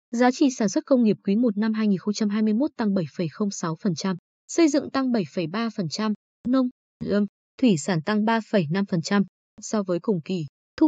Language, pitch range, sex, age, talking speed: Vietnamese, 190-250 Hz, female, 20-39, 150 wpm